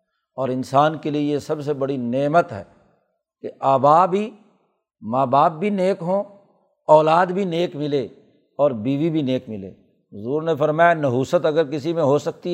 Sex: male